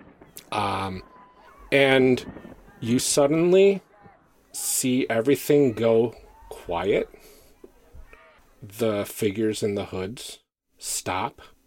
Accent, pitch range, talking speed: American, 85-110 Hz, 70 wpm